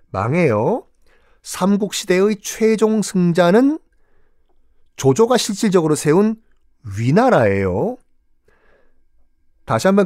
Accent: native